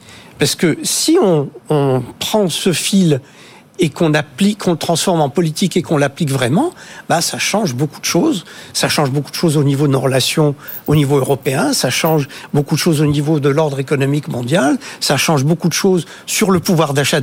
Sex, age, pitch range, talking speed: male, 60-79, 150-190 Hz, 205 wpm